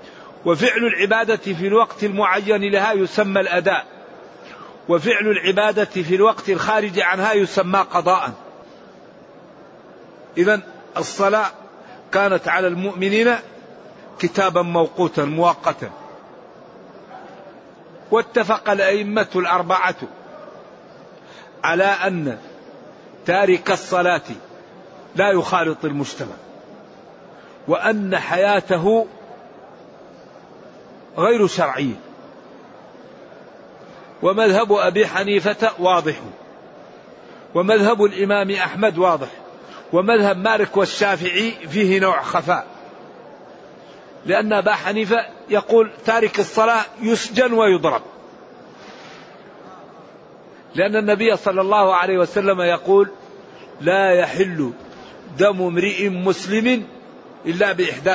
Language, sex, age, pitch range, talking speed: Arabic, male, 50-69, 185-215 Hz, 75 wpm